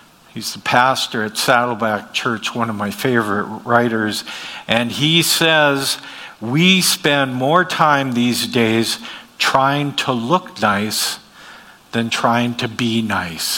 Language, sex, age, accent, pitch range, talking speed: English, male, 50-69, American, 115-140 Hz, 130 wpm